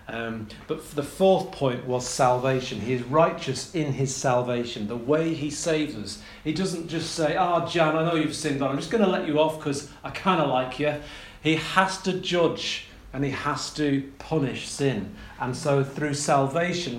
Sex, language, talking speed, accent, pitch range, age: male, English, 200 wpm, British, 125-160 Hz, 40-59